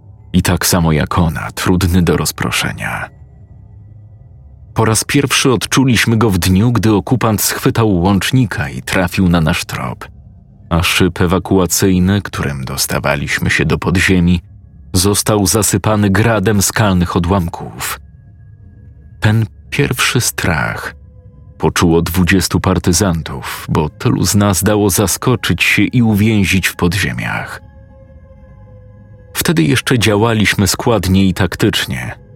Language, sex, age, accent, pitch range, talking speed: Polish, male, 40-59, native, 90-105 Hz, 110 wpm